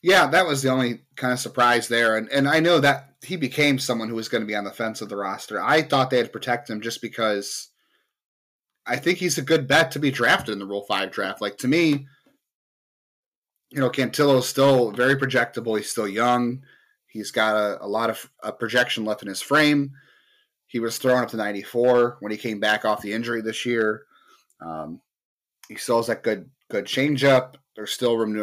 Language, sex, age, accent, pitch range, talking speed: English, male, 30-49, American, 110-135 Hz, 215 wpm